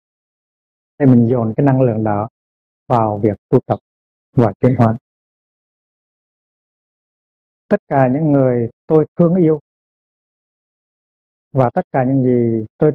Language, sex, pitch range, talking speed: Vietnamese, male, 110-140 Hz, 125 wpm